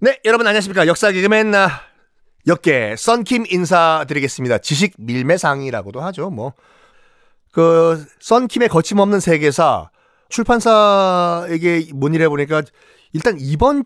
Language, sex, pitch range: Korean, male, 120-185 Hz